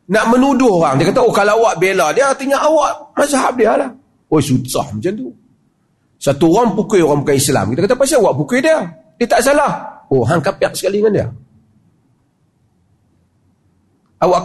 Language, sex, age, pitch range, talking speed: Malay, male, 40-59, 135-215 Hz, 165 wpm